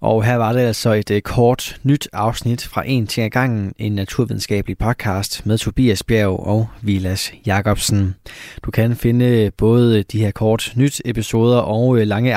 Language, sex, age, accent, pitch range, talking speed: Danish, male, 20-39, native, 100-125 Hz, 165 wpm